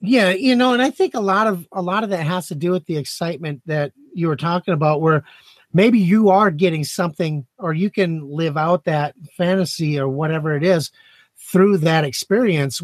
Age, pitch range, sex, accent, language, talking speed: 30-49, 150-185 Hz, male, American, English, 205 wpm